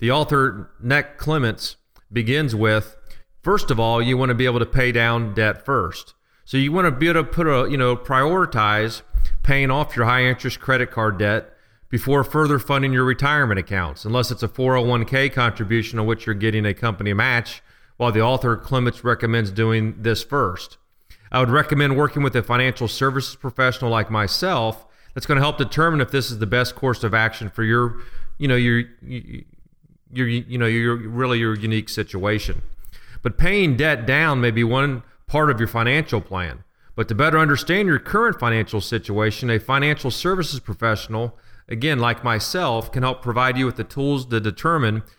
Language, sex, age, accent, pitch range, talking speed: English, male, 40-59, American, 110-135 Hz, 185 wpm